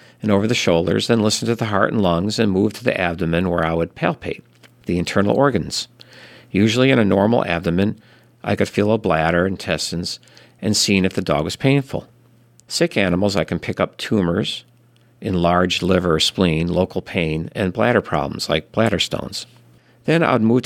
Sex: male